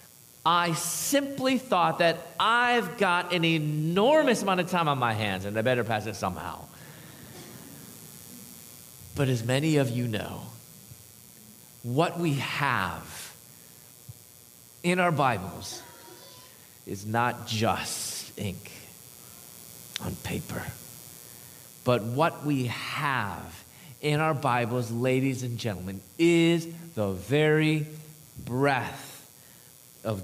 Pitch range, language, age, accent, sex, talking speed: 115-170 Hz, English, 30-49, American, male, 105 wpm